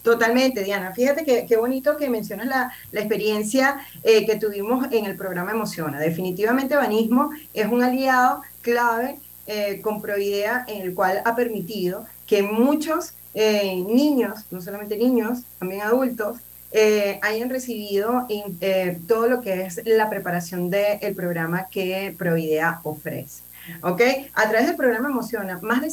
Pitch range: 195-245 Hz